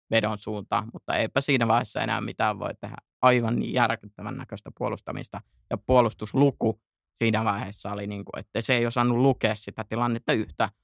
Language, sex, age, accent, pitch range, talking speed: Finnish, male, 20-39, native, 110-125 Hz, 165 wpm